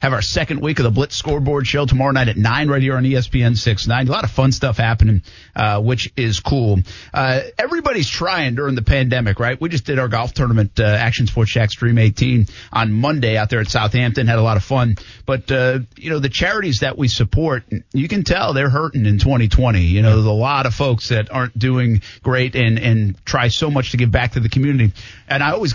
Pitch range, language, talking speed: 110-130 Hz, English, 230 wpm